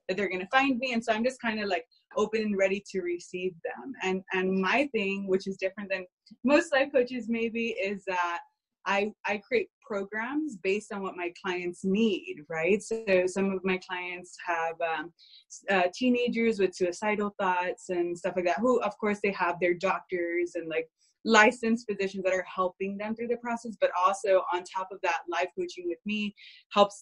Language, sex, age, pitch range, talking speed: English, female, 20-39, 185-230 Hz, 200 wpm